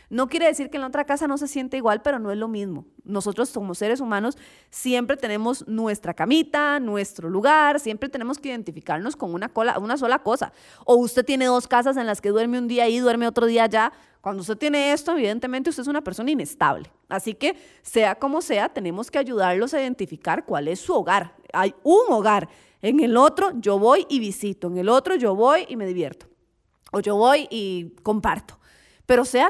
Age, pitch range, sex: 30-49, 210-275 Hz, female